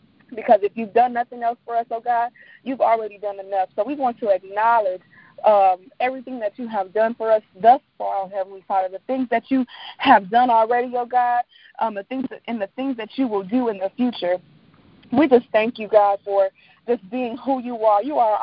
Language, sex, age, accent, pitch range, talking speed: English, female, 30-49, American, 215-260 Hz, 210 wpm